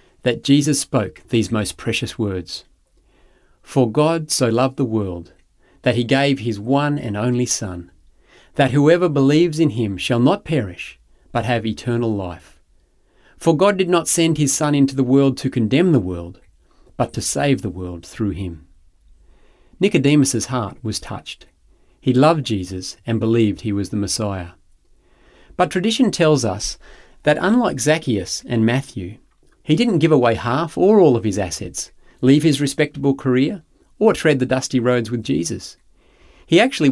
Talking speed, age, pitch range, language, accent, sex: 160 wpm, 40-59, 105-150 Hz, English, Australian, male